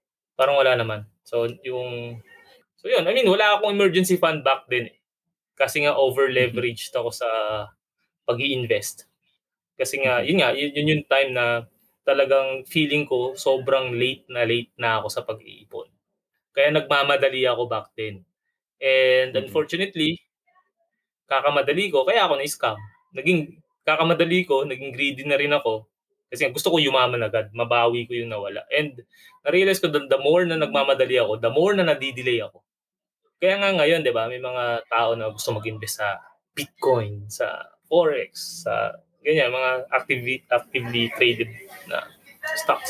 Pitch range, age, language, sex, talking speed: 120-185 Hz, 20-39, Filipino, male, 150 wpm